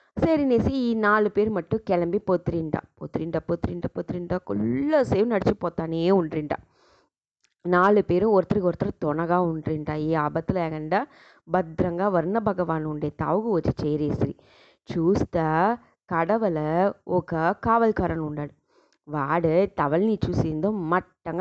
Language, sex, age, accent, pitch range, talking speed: English, female, 20-39, Indian, 160-205 Hz, 85 wpm